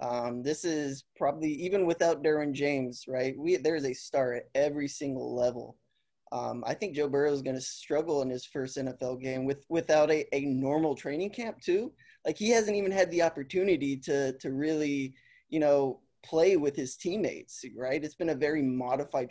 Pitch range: 130-165 Hz